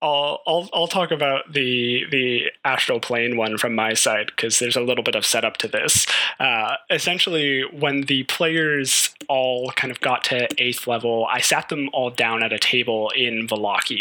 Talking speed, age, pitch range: 190 wpm, 20-39, 115-140 Hz